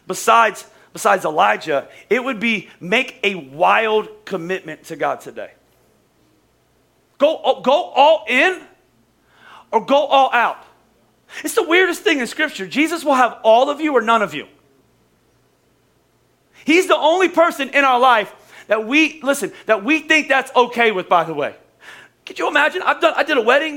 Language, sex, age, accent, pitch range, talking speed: English, male, 40-59, American, 220-310 Hz, 165 wpm